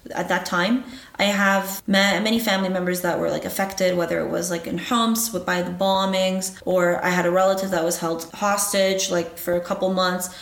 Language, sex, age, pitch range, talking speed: English, female, 20-39, 180-215 Hz, 205 wpm